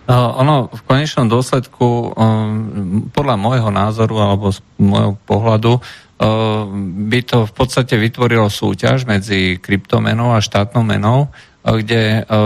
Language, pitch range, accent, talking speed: Czech, 105-120 Hz, Slovak, 110 wpm